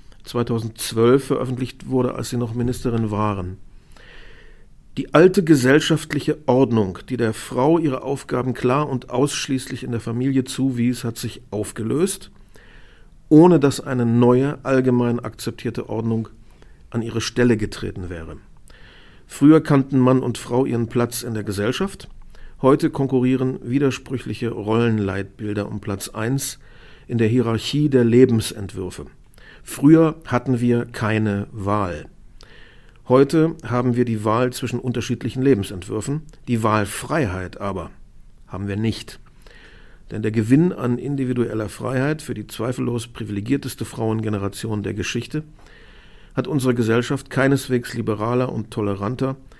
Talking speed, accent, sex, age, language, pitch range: 120 wpm, German, male, 50-69, German, 110-130 Hz